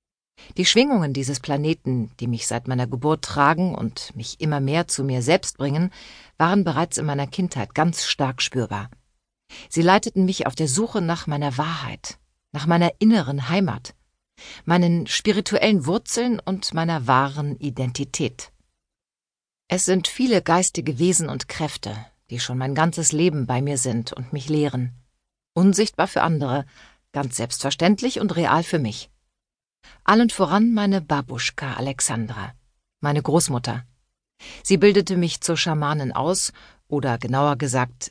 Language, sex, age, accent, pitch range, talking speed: German, female, 50-69, German, 130-180 Hz, 140 wpm